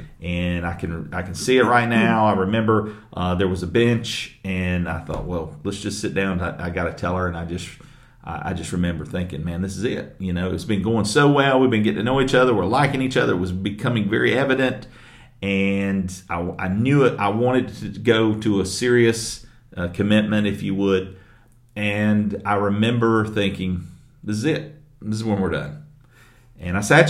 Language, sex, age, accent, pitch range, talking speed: English, male, 40-59, American, 95-120 Hz, 215 wpm